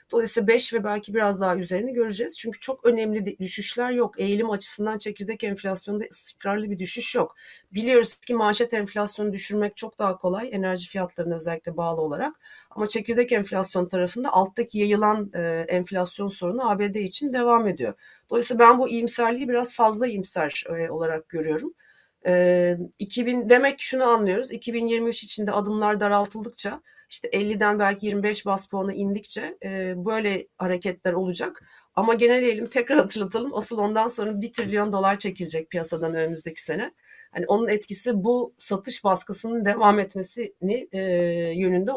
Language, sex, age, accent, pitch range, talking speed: Turkish, female, 30-49, native, 185-230 Hz, 140 wpm